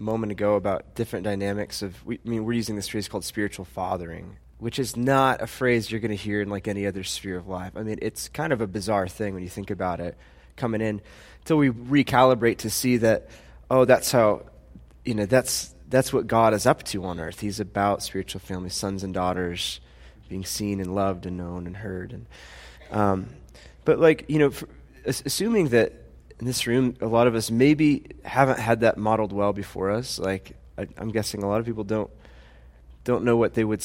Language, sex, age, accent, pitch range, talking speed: English, male, 20-39, American, 95-120 Hz, 215 wpm